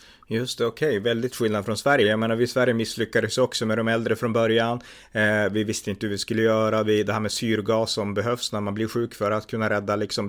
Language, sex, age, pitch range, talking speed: Swedish, male, 30-49, 100-115 Hz, 255 wpm